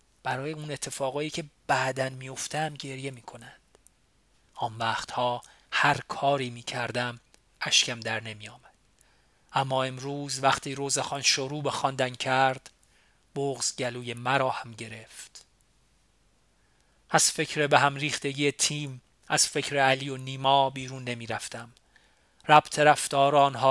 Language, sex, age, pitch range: Persian, male, 40-59, 125-145 Hz